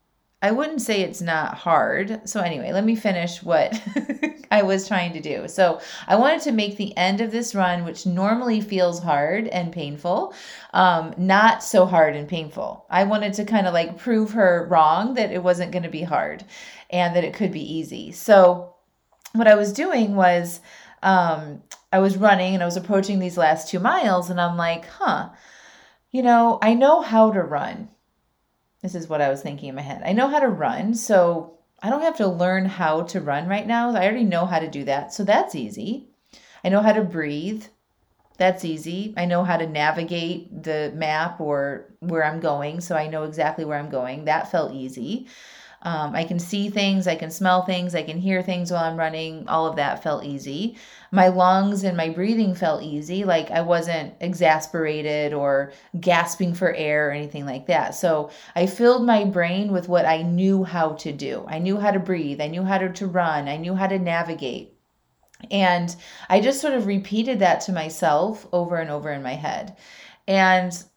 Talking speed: 200 wpm